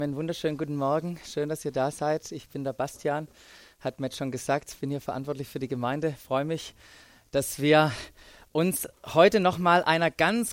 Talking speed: 195 wpm